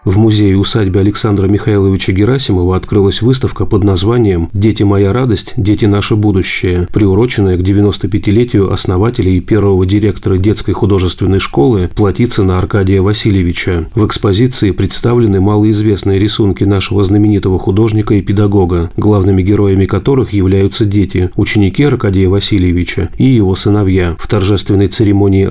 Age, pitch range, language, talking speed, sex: 40-59, 95-115 Hz, Russian, 130 wpm, male